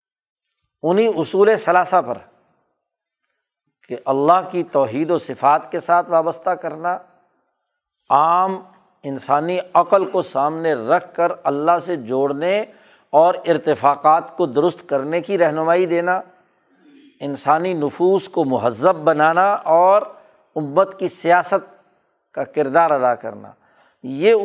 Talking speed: 115 wpm